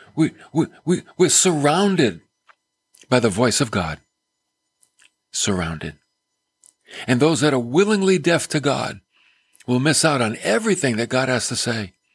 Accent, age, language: American, 50-69, English